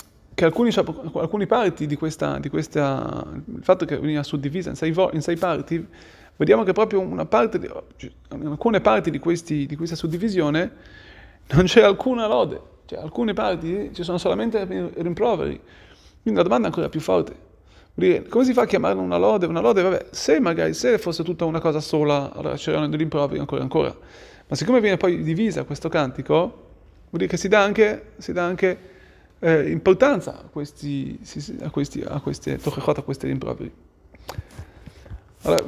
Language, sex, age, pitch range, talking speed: Italian, male, 30-49, 145-185 Hz, 170 wpm